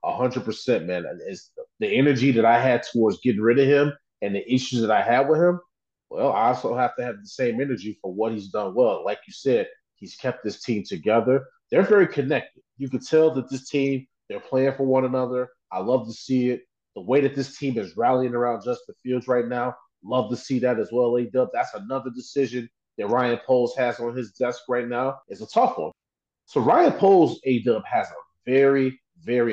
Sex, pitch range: male, 125-175 Hz